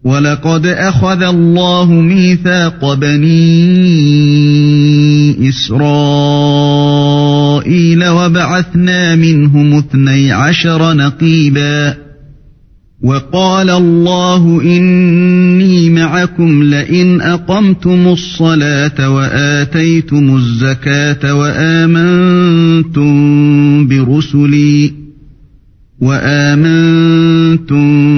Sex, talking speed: male, 50 wpm